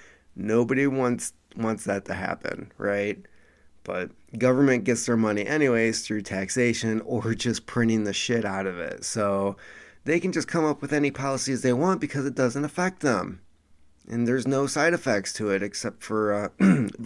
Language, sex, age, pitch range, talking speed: English, male, 30-49, 100-130 Hz, 170 wpm